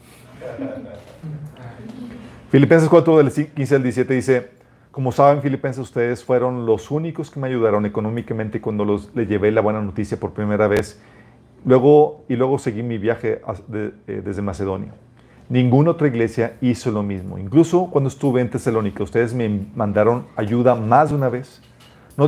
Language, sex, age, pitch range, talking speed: Spanish, male, 40-59, 110-135 Hz, 160 wpm